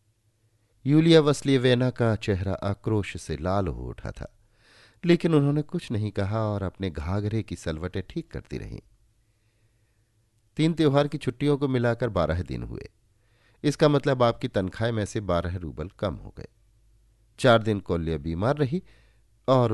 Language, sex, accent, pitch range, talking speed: Hindi, male, native, 105-130 Hz, 150 wpm